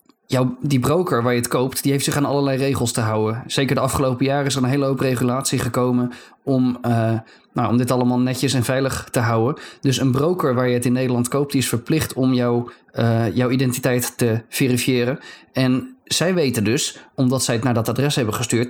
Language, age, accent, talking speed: Dutch, 20-39, Dutch, 220 wpm